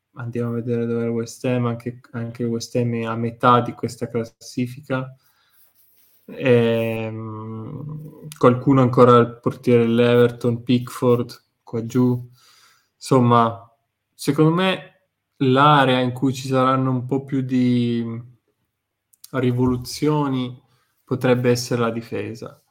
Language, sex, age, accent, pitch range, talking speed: Italian, male, 20-39, native, 120-130 Hz, 120 wpm